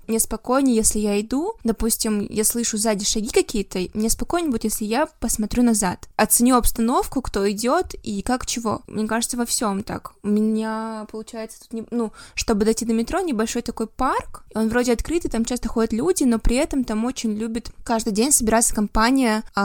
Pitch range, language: 215-240 Hz, Russian